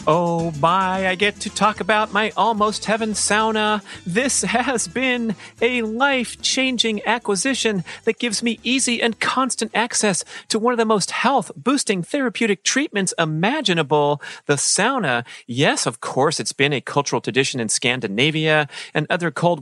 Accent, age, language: American, 40-59, English